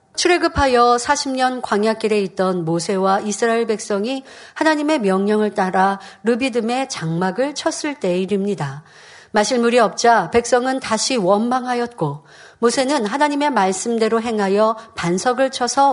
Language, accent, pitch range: Korean, native, 195-285 Hz